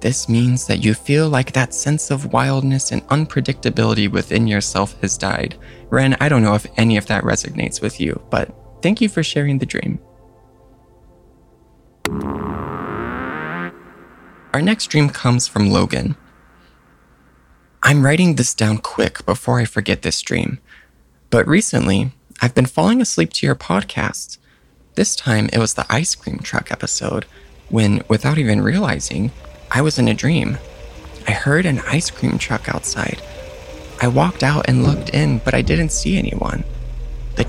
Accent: American